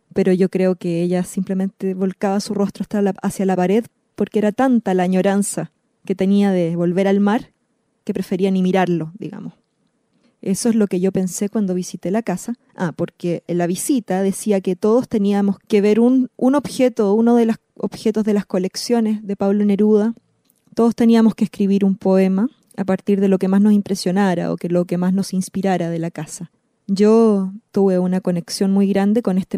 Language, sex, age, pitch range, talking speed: Spanish, female, 20-39, 180-215 Hz, 195 wpm